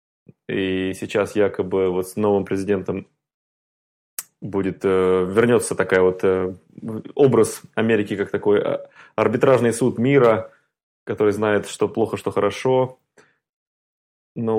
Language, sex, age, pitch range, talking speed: Russian, male, 20-39, 95-120 Hz, 110 wpm